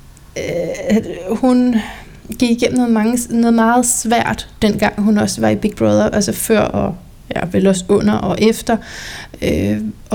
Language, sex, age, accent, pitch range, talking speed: Danish, female, 30-49, native, 195-240 Hz, 155 wpm